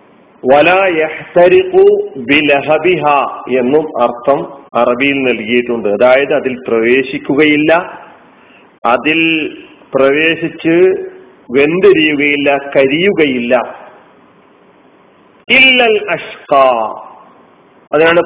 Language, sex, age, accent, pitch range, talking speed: Malayalam, male, 40-59, native, 140-210 Hz, 40 wpm